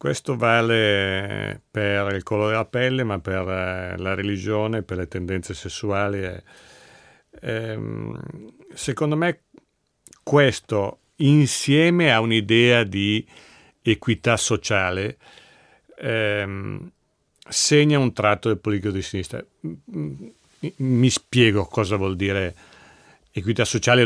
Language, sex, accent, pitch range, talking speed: Italian, male, native, 100-125 Hz, 95 wpm